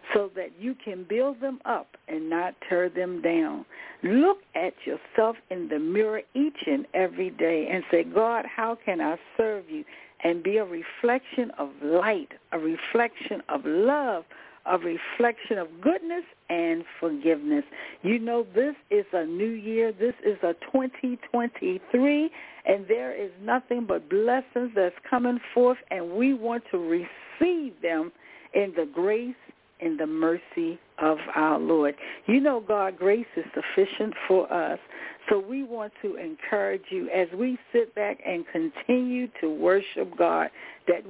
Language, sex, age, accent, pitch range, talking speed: English, female, 60-79, American, 175-250 Hz, 155 wpm